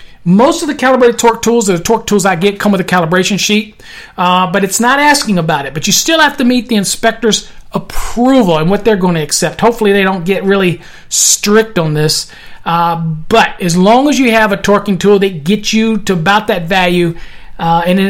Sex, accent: male, American